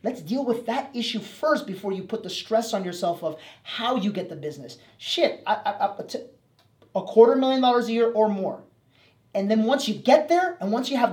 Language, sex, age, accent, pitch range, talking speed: English, male, 30-49, American, 160-215 Hz, 210 wpm